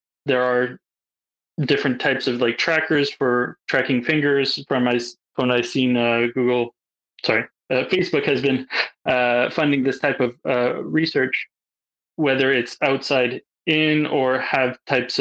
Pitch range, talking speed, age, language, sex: 120-140 Hz, 140 wpm, 20-39, Persian, male